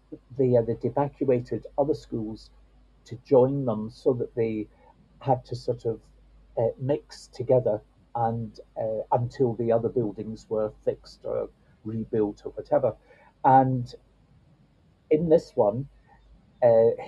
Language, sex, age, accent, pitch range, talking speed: English, male, 50-69, British, 115-140 Hz, 130 wpm